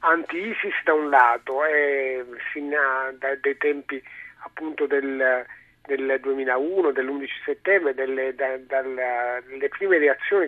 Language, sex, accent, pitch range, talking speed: Italian, male, native, 135-180 Hz, 90 wpm